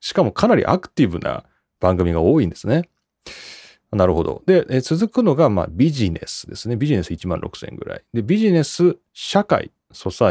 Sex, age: male, 30-49